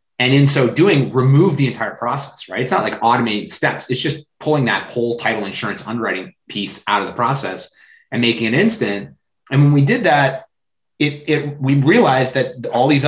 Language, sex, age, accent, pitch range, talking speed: English, male, 30-49, American, 110-155 Hz, 200 wpm